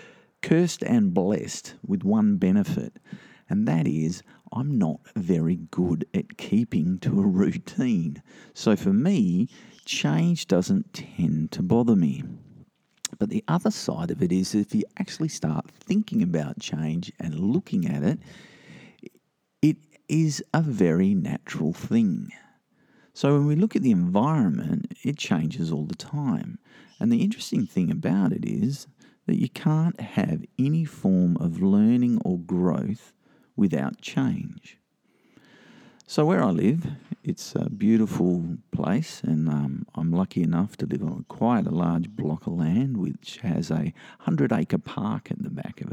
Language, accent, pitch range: English, Australian, 130-210 Hz